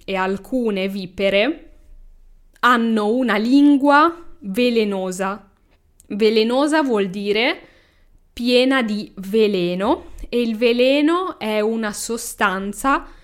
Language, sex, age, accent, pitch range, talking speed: Italian, female, 10-29, native, 190-240 Hz, 85 wpm